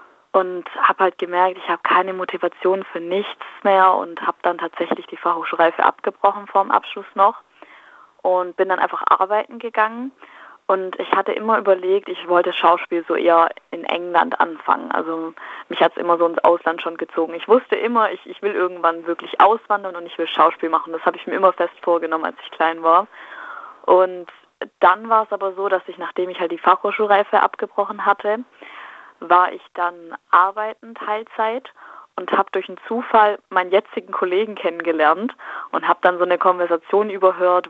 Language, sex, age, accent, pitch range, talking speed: German, female, 20-39, German, 170-215 Hz, 175 wpm